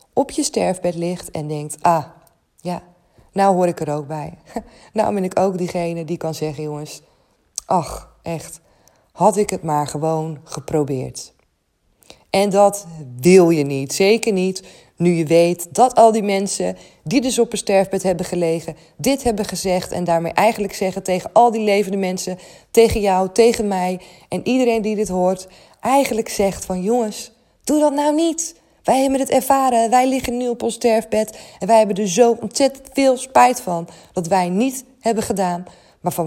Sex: female